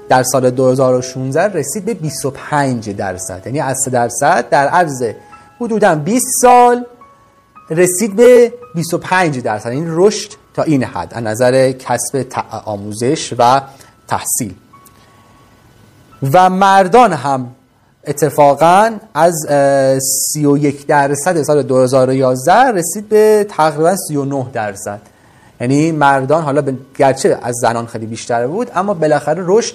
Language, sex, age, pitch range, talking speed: Persian, male, 30-49, 125-185 Hz, 115 wpm